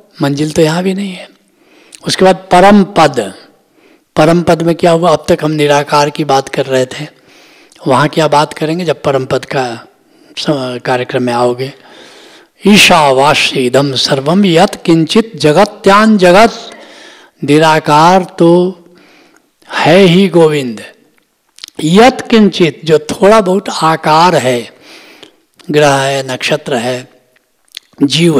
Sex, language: male, Hindi